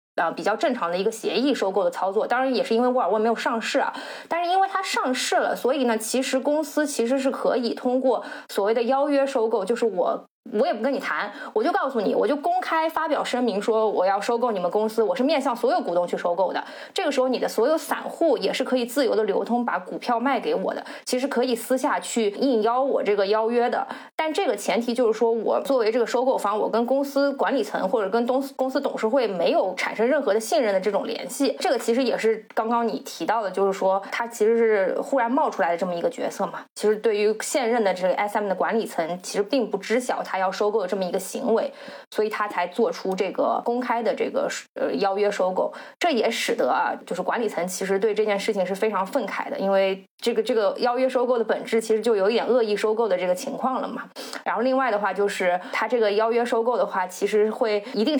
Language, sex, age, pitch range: Chinese, female, 20-39, 205-265 Hz